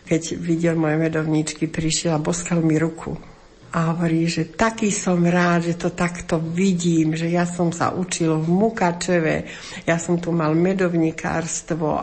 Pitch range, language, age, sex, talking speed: 165-185 Hz, Slovak, 60-79, female, 155 wpm